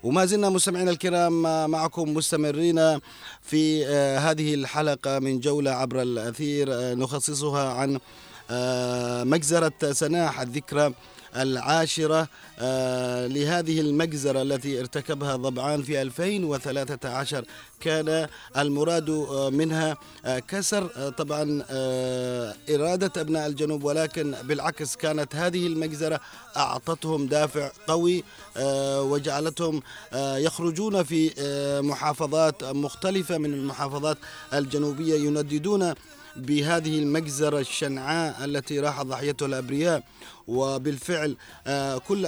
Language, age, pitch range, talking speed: Arabic, 30-49, 130-155 Hz, 85 wpm